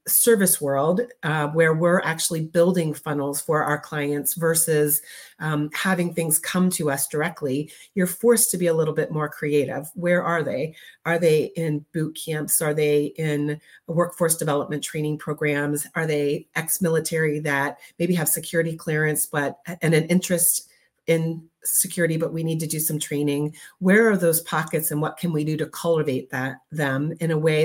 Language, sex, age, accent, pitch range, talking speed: English, female, 40-59, American, 150-175 Hz, 175 wpm